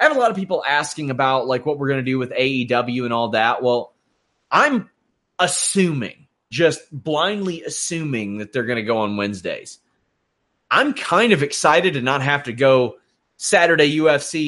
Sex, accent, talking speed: male, American, 180 wpm